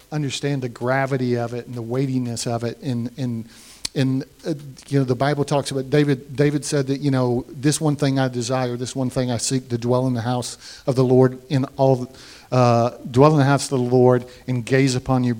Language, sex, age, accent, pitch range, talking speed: English, male, 50-69, American, 125-145 Hz, 235 wpm